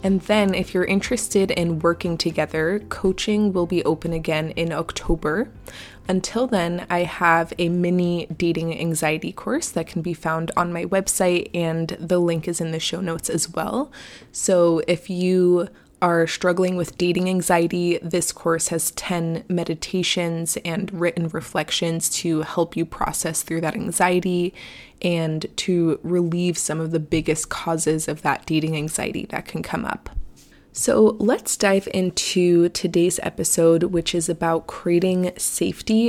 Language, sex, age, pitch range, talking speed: English, female, 20-39, 165-185 Hz, 150 wpm